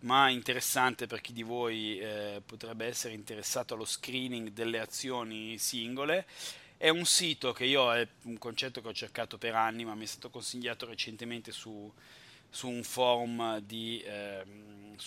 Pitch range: 115-135 Hz